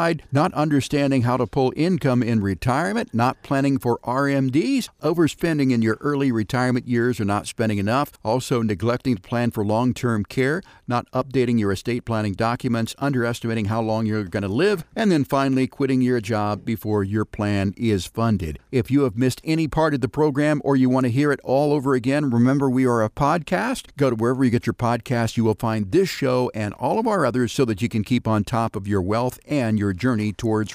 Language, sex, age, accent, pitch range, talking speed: English, male, 50-69, American, 115-145 Hz, 210 wpm